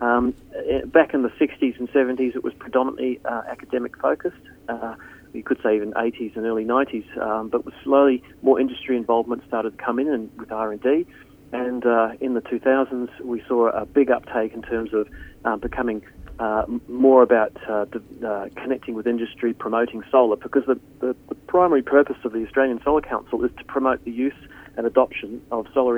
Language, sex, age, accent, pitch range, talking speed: English, male, 40-59, Australian, 115-135 Hz, 185 wpm